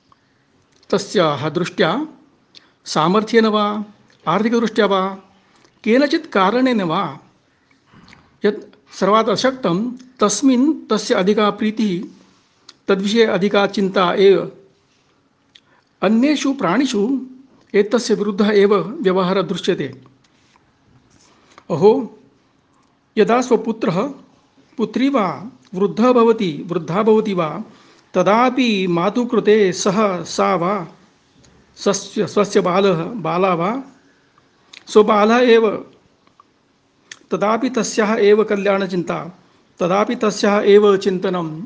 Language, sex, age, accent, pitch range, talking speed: Malayalam, male, 60-79, native, 190-225 Hz, 35 wpm